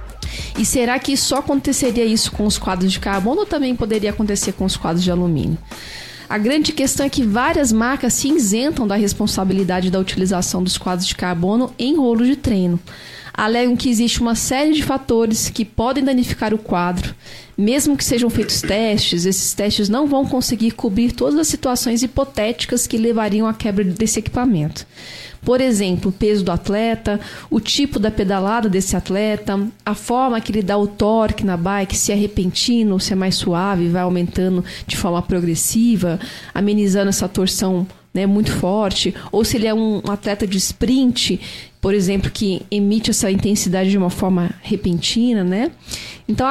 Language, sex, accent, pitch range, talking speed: Portuguese, female, Brazilian, 190-245 Hz, 170 wpm